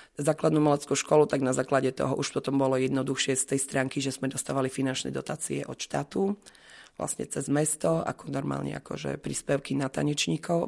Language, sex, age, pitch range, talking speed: Slovak, female, 30-49, 130-145 Hz, 170 wpm